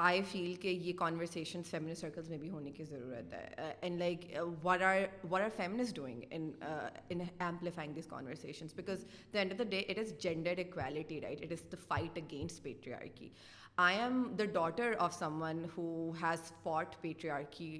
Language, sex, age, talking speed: Urdu, female, 30-49, 175 wpm